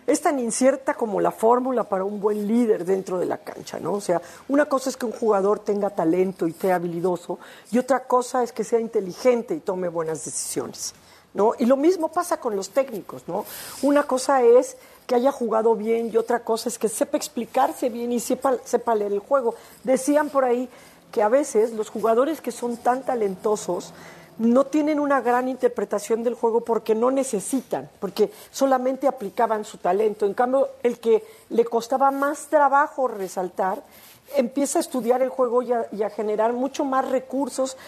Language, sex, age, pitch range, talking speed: Spanish, female, 40-59, 215-270 Hz, 185 wpm